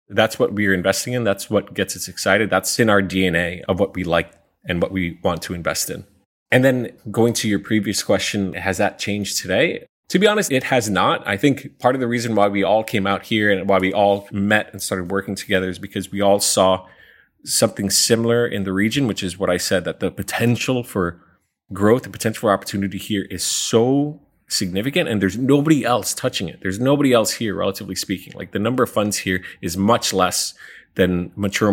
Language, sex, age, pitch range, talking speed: English, male, 20-39, 95-120 Hz, 215 wpm